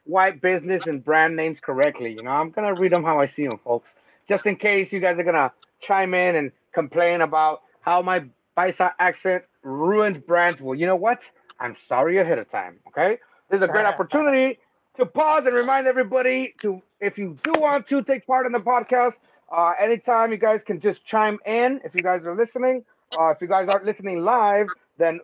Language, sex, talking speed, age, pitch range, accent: English, male, 210 wpm, 30-49, 180-230 Hz, American